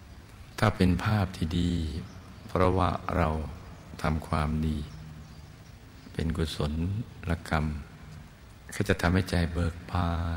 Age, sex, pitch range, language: 60-79, male, 80-90 Hz, Thai